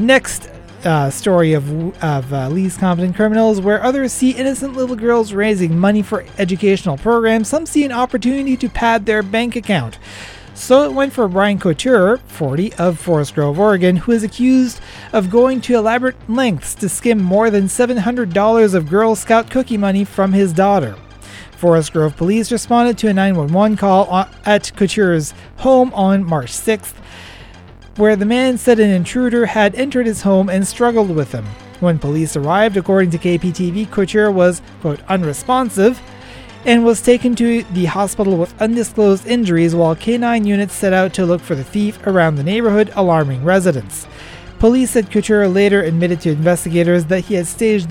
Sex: male